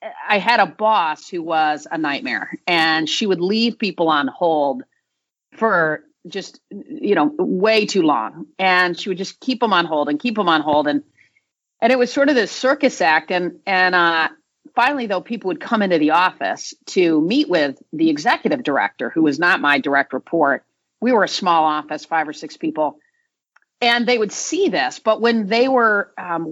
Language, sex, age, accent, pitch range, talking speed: English, female, 40-59, American, 155-230 Hz, 195 wpm